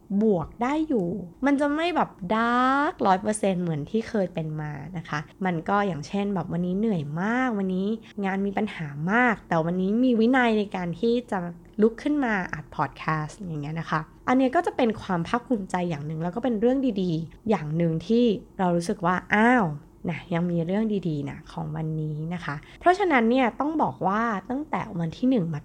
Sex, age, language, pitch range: female, 20-39, Thai, 165-220 Hz